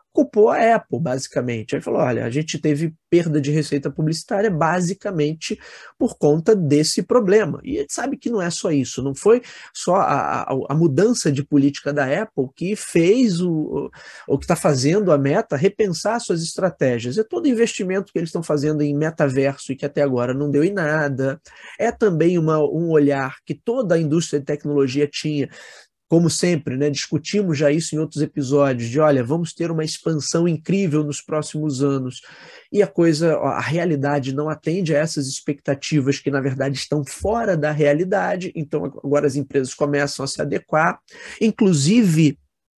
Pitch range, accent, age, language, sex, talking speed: 145-180 Hz, Brazilian, 20-39, Portuguese, male, 175 wpm